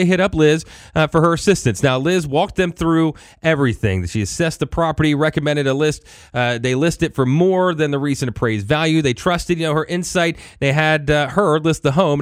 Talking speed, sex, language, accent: 220 wpm, male, English, American